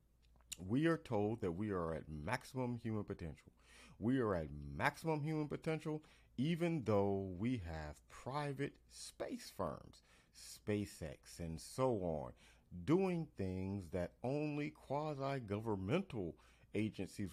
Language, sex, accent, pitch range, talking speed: English, male, American, 85-125 Hz, 115 wpm